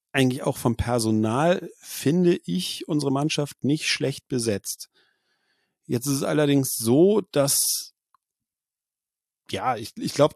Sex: male